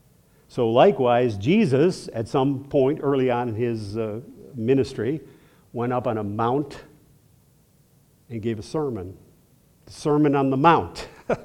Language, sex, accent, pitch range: English, male, American, 120-165 Hz